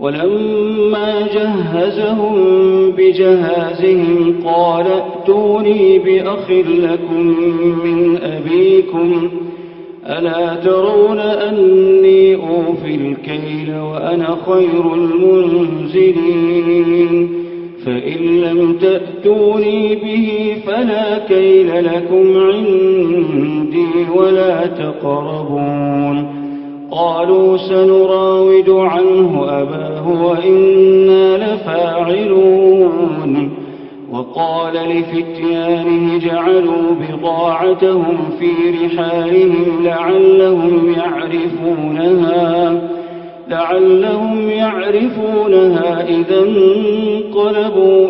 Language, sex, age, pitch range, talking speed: Arabic, male, 40-59, 170-195 Hz, 55 wpm